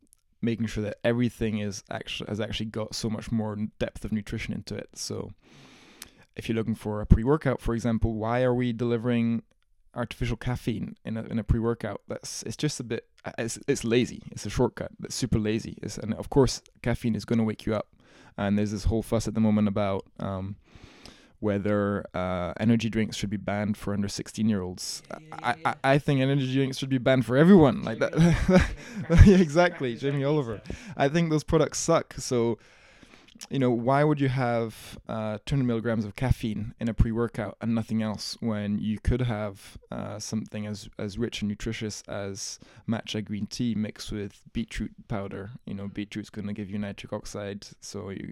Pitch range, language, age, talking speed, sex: 105-120 Hz, English, 20-39, 190 wpm, male